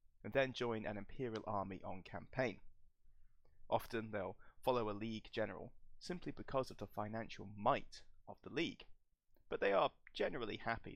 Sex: male